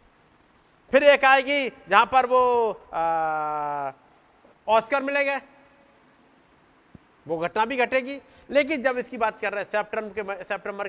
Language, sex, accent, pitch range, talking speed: Hindi, male, native, 175-235 Hz, 125 wpm